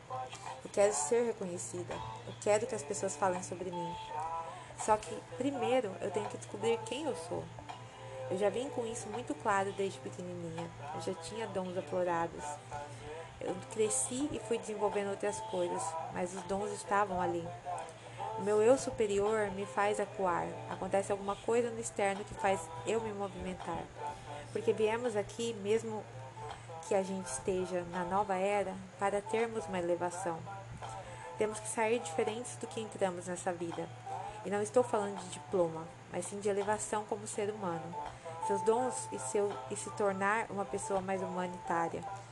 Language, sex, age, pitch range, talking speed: Portuguese, female, 20-39, 170-215 Hz, 160 wpm